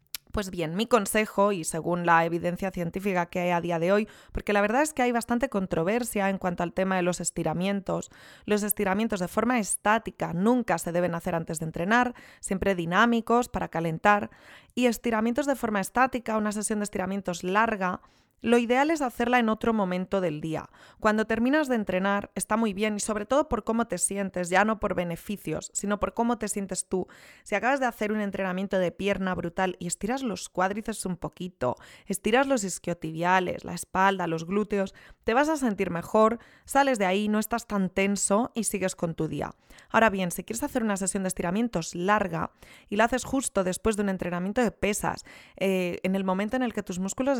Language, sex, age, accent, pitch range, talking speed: Spanish, female, 20-39, Spanish, 180-225 Hz, 200 wpm